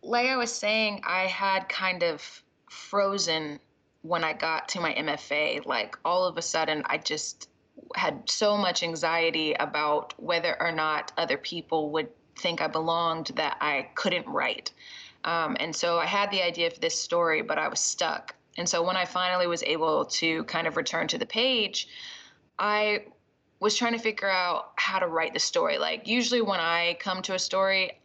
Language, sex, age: English, female, 20-39